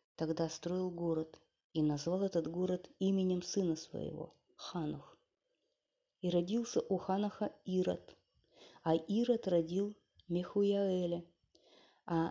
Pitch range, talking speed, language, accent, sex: 165-195 Hz, 100 wpm, Russian, native, female